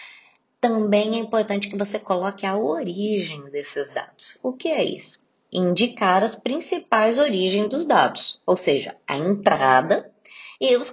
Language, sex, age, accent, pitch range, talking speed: Portuguese, female, 20-39, Brazilian, 180-240 Hz, 145 wpm